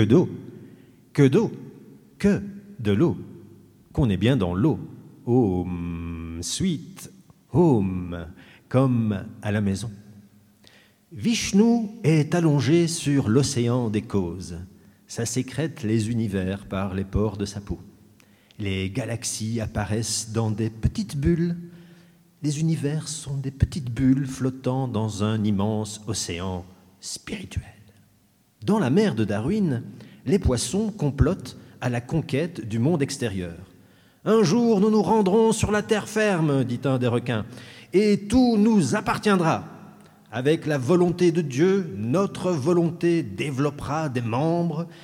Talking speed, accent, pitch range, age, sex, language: 130 wpm, French, 110-170 Hz, 40-59, male, French